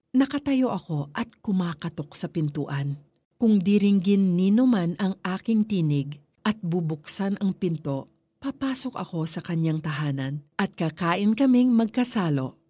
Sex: female